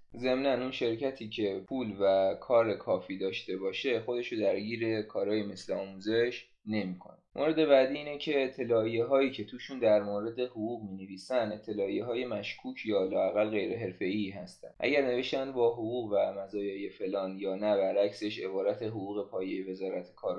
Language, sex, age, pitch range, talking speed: Persian, male, 20-39, 100-130 Hz, 155 wpm